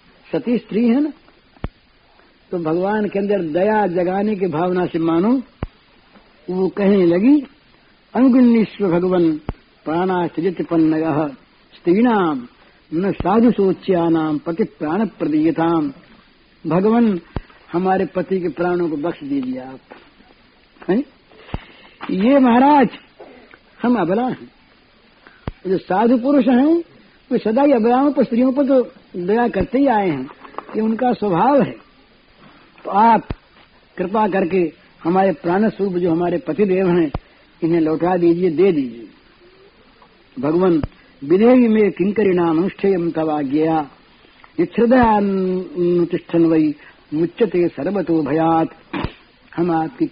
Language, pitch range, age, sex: Hindi, 170-230 Hz, 60-79, female